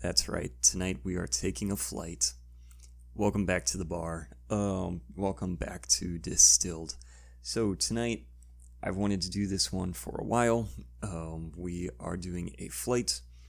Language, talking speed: English, 155 wpm